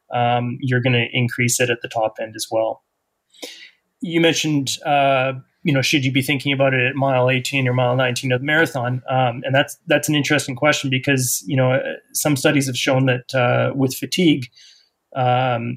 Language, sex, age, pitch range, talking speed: English, male, 30-49, 125-135 Hz, 195 wpm